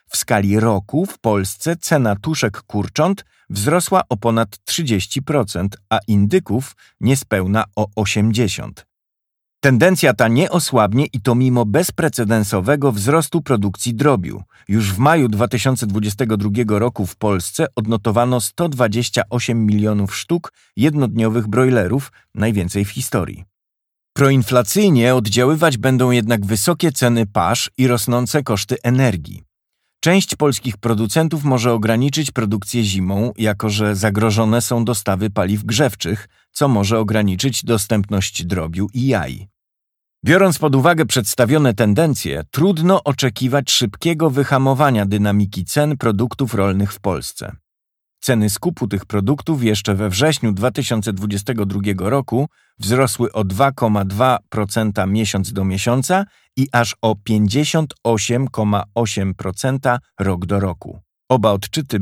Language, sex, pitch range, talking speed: Polish, male, 105-135 Hz, 110 wpm